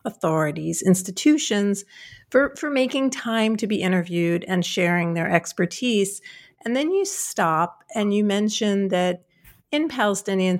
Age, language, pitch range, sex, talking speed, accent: 50-69, English, 175-225 Hz, female, 130 wpm, American